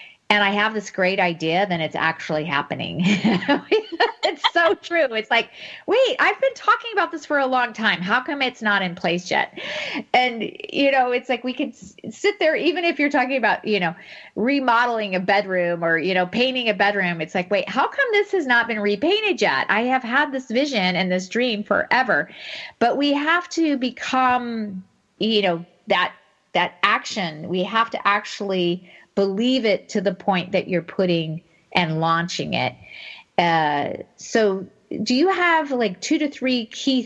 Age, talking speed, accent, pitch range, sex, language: 40-59, 180 wpm, American, 180-255 Hz, female, English